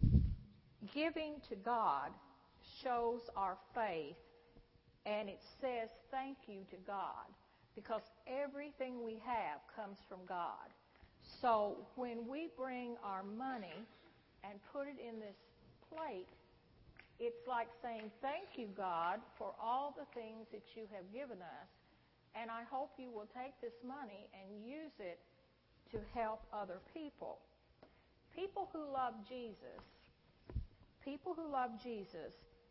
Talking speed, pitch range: 130 wpm, 205-270 Hz